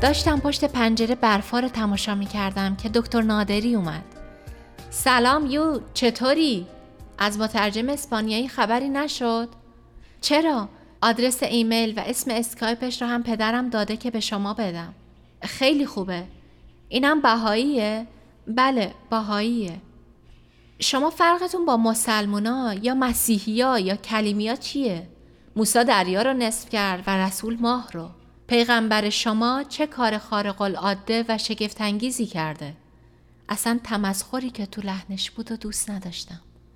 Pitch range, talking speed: 205-245 Hz, 120 wpm